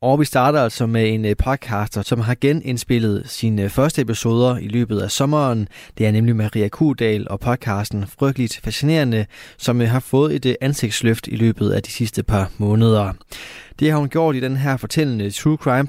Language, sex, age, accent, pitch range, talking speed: Danish, male, 20-39, native, 105-135 Hz, 180 wpm